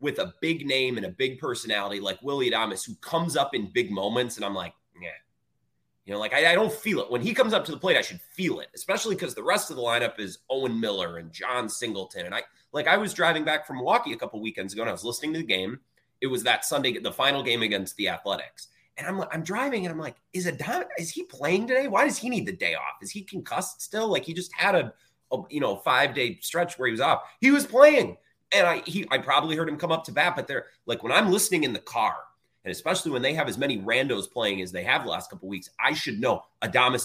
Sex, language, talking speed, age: male, English, 270 wpm, 30-49